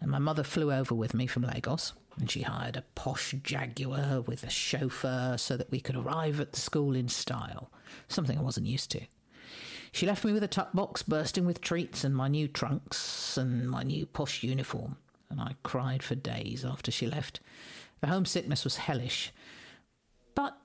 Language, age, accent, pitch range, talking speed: English, 50-69, British, 125-155 Hz, 190 wpm